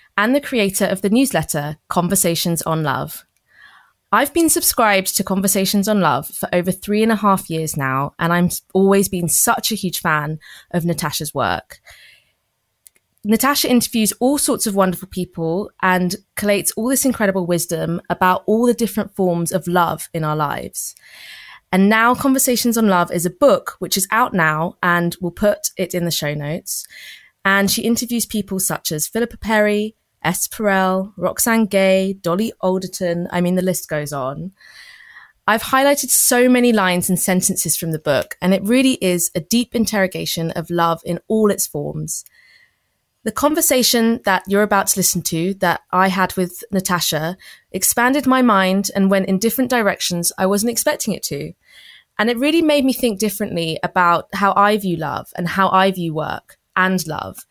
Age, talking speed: 20-39, 175 wpm